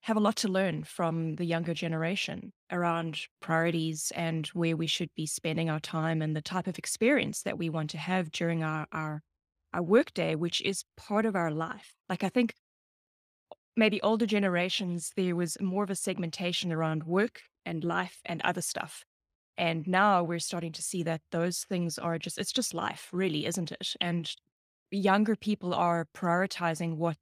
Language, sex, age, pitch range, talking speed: English, female, 20-39, 165-200 Hz, 180 wpm